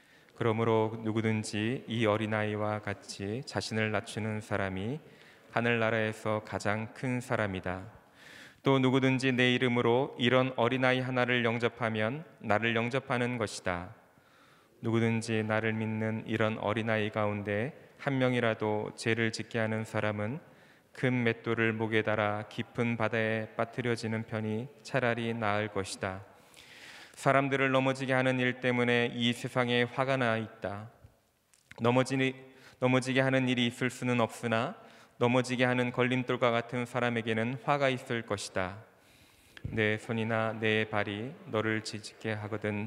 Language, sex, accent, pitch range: Korean, male, native, 110-125 Hz